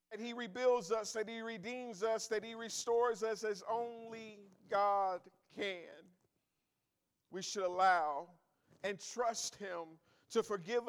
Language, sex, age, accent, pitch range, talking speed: English, male, 50-69, American, 190-225 Hz, 130 wpm